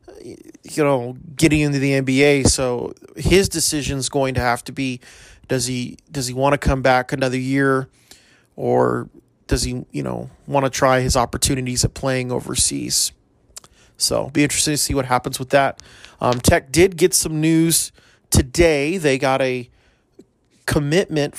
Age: 30-49